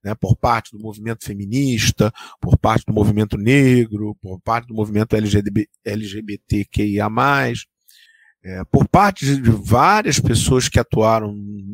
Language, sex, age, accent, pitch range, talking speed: Portuguese, male, 40-59, Brazilian, 105-150 Hz, 120 wpm